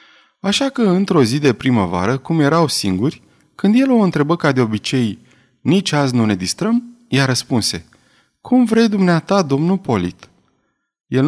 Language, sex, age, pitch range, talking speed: Romanian, male, 30-49, 110-165 Hz, 155 wpm